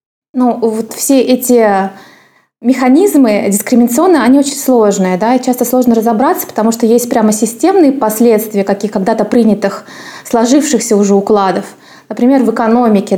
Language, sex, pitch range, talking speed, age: Russian, female, 195-235 Hz, 130 wpm, 20-39